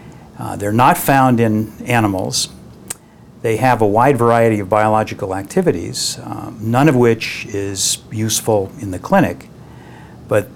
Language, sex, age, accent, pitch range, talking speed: English, male, 60-79, American, 100-120 Hz, 135 wpm